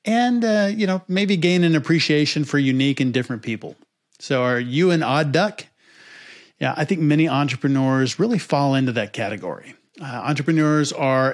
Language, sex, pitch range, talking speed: English, male, 130-155 Hz, 170 wpm